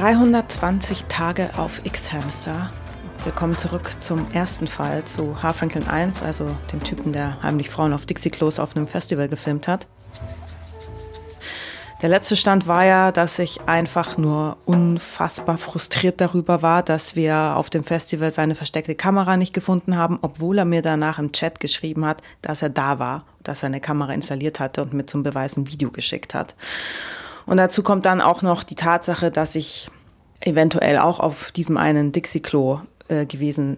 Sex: female